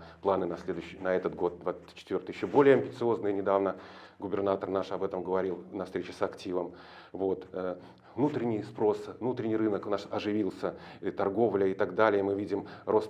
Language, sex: Russian, male